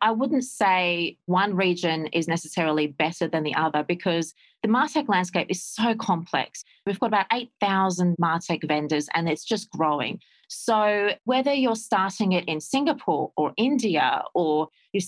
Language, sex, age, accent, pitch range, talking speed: English, female, 30-49, Australian, 165-220 Hz, 155 wpm